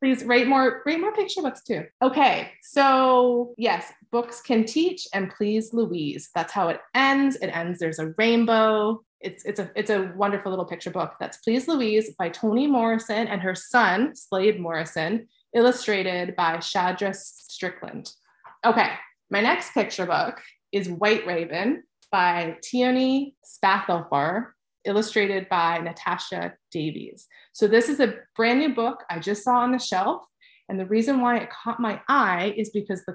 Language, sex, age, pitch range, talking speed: English, female, 20-39, 185-240 Hz, 160 wpm